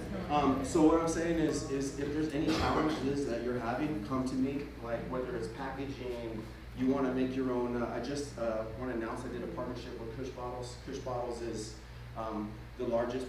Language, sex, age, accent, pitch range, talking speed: English, male, 30-49, American, 115-130 Hz, 210 wpm